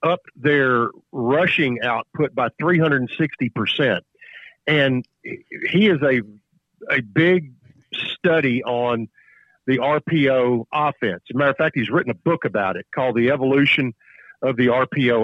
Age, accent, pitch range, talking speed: 50-69, American, 120-150 Hz, 135 wpm